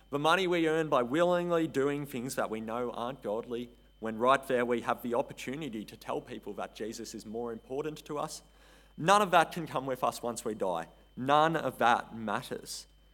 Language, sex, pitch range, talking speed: English, male, 115-160 Hz, 200 wpm